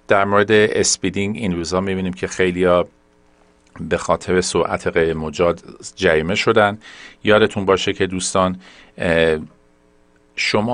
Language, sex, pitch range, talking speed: Persian, male, 80-105 Hz, 105 wpm